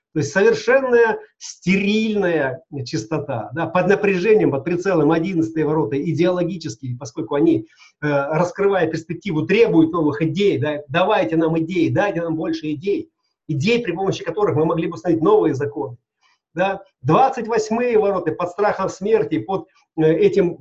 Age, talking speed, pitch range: 40-59, 135 wpm, 150-190 Hz